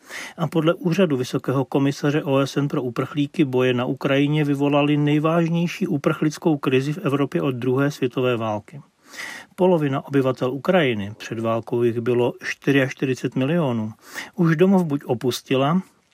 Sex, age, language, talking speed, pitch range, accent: male, 40-59, Czech, 125 wpm, 130-160 Hz, native